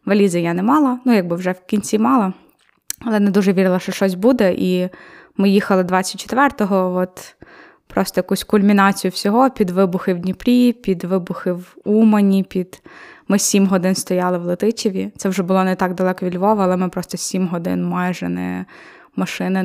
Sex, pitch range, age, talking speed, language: female, 180-195 Hz, 20-39, 175 wpm, Ukrainian